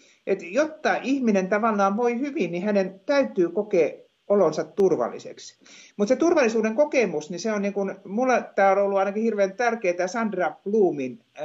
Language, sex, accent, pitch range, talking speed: Finnish, male, native, 175-255 Hz, 150 wpm